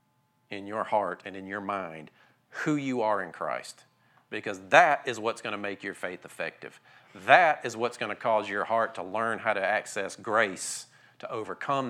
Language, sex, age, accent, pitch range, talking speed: English, male, 40-59, American, 105-130 Hz, 190 wpm